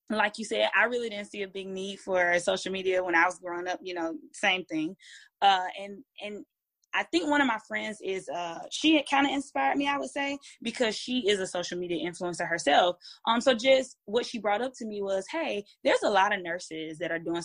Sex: female